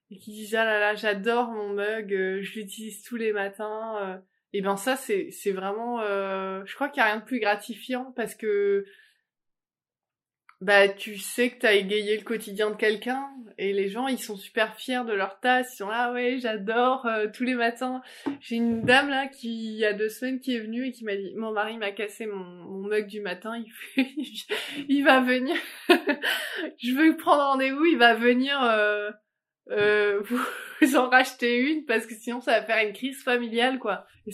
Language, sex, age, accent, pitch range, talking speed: French, female, 20-39, French, 205-255 Hz, 205 wpm